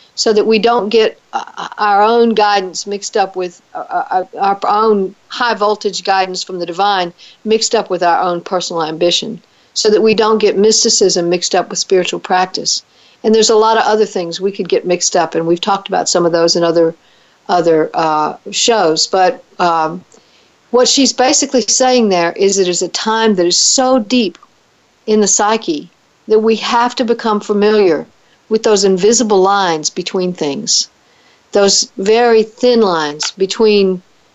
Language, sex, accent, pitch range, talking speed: English, female, American, 180-225 Hz, 170 wpm